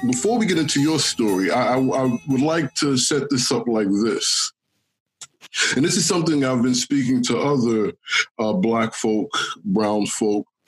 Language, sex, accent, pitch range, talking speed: English, male, American, 110-145 Hz, 170 wpm